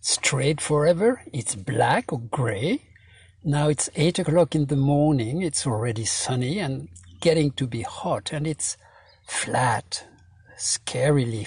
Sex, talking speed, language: male, 130 wpm, English